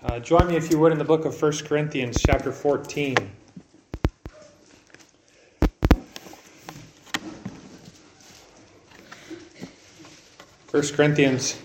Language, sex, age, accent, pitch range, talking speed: English, male, 30-49, American, 135-175 Hz, 80 wpm